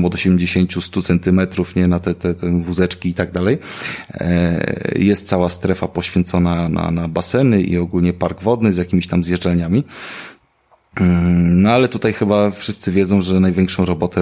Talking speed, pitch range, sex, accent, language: 150 wpm, 90-100 Hz, male, native, Polish